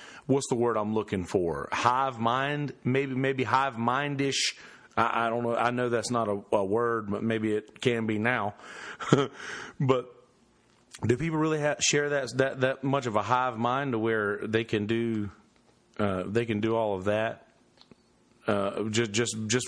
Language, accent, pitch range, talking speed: English, American, 110-140 Hz, 185 wpm